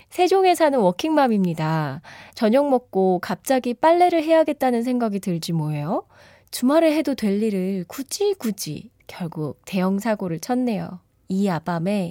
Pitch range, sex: 180-260 Hz, female